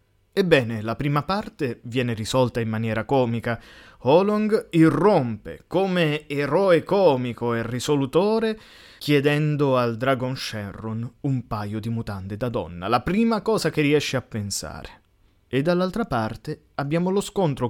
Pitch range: 115-160 Hz